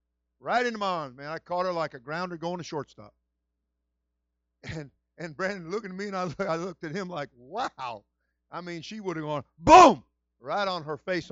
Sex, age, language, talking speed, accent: male, 50-69, English, 200 wpm, American